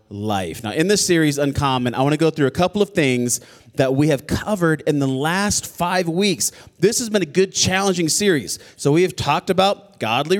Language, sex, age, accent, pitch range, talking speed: English, male, 30-49, American, 135-185 Hz, 215 wpm